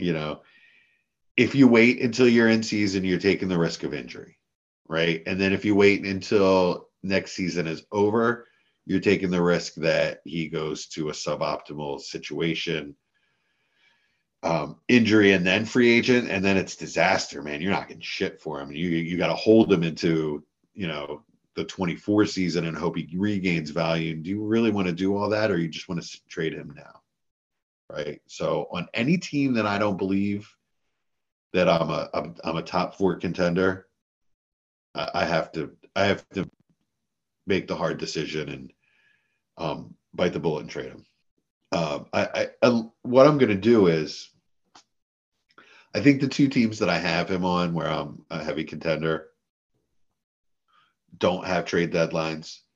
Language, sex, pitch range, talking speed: English, male, 85-110 Hz, 175 wpm